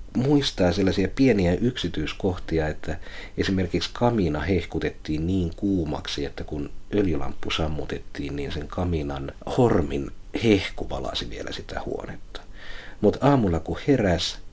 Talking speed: 110 wpm